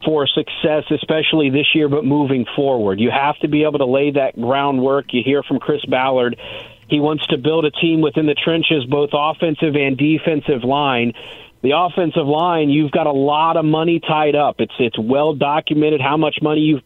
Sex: male